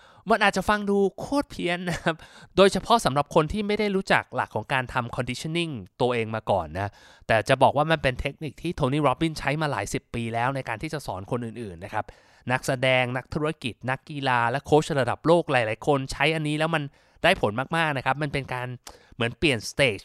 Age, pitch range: 20-39, 125-165 Hz